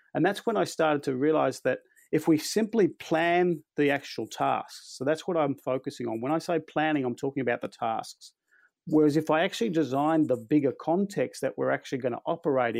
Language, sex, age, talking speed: English, male, 40-59, 205 wpm